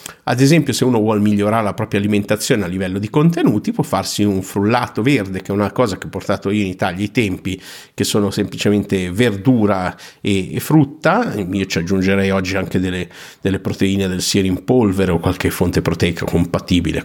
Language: Italian